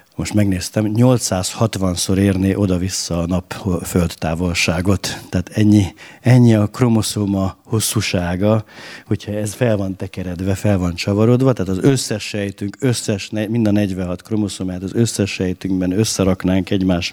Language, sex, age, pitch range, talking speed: Hungarian, male, 50-69, 90-110 Hz, 130 wpm